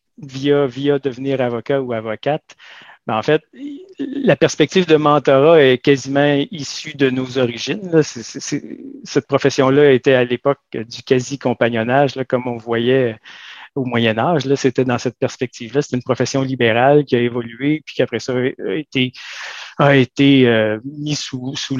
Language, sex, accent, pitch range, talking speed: French, male, Canadian, 125-145 Hz, 160 wpm